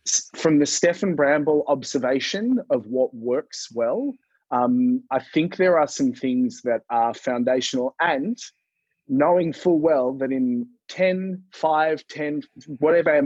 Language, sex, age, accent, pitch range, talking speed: English, male, 30-49, Australian, 125-175 Hz, 130 wpm